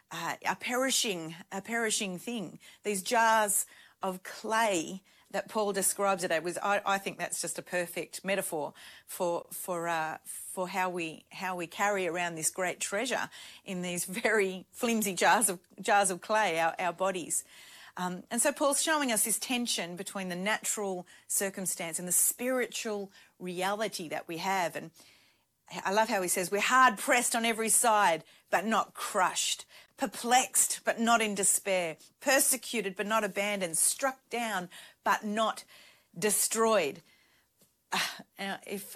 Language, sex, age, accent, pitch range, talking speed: English, female, 40-59, Australian, 180-220 Hz, 150 wpm